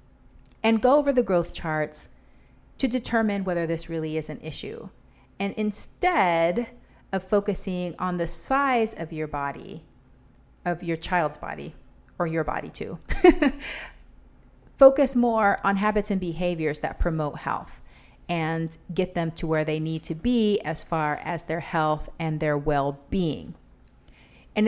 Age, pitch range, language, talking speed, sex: 40-59, 160-210 Hz, English, 145 wpm, female